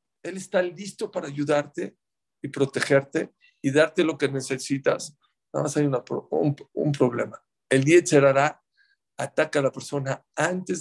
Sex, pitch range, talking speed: male, 145-205 Hz, 150 wpm